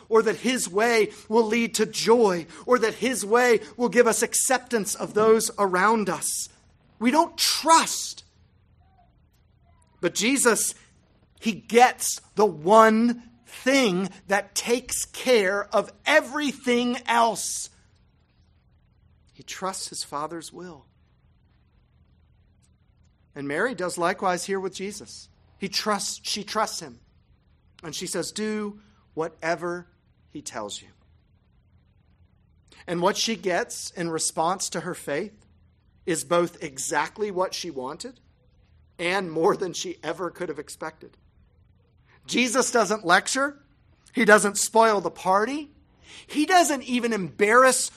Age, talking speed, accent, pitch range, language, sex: 40-59, 120 wpm, American, 170-235 Hz, English, male